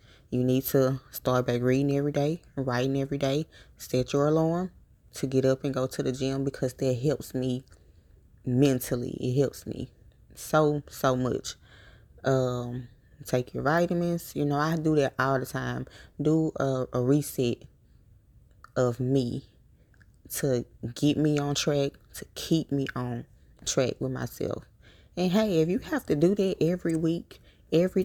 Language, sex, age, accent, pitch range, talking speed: English, female, 20-39, American, 125-160 Hz, 160 wpm